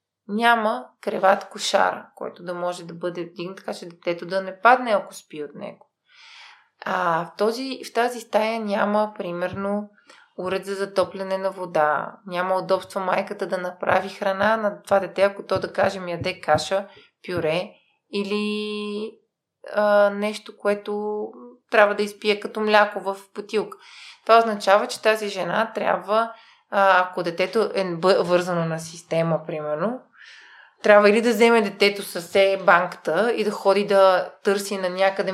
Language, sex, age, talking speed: Bulgarian, female, 20-39, 150 wpm